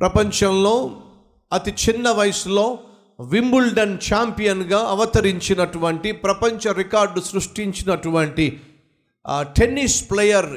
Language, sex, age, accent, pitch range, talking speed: Telugu, male, 50-69, native, 180-230 Hz, 60 wpm